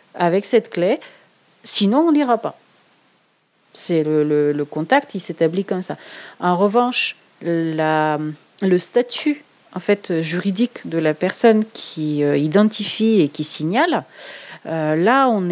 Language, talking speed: French, 140 wpm